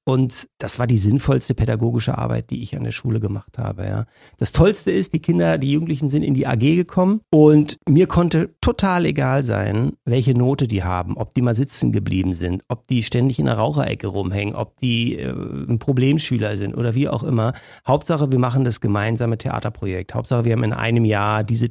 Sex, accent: male, German